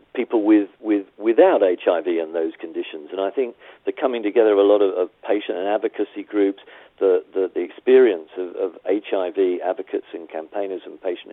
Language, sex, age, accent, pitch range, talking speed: English, male, 50-69, British, 330-425 Hz, 185 wpm